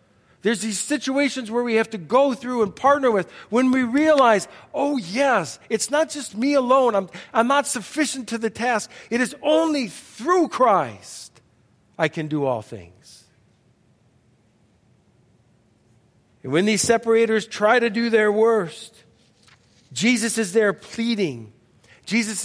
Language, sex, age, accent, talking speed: English, male, 50-69, American, 140 wpm